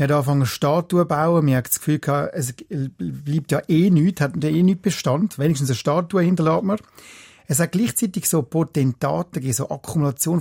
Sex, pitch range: male, 135-175 Hz